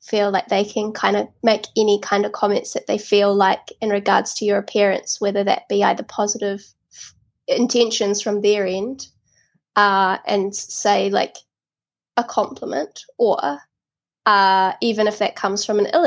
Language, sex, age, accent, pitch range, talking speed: English, female, 10-29, Australian, 200-225 Hz, 165 wpm